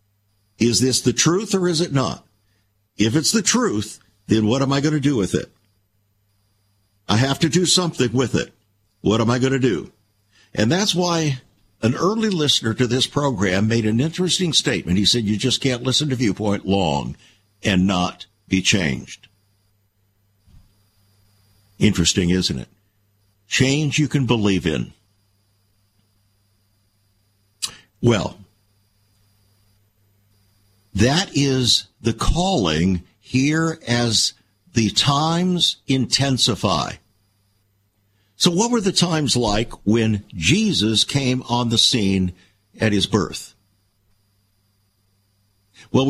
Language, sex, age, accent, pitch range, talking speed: English, male, 60-79, American, 100-130 Hz, 120 wpm